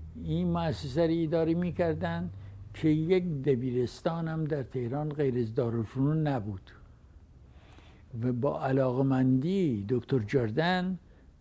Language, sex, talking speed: English, male, 105 wpm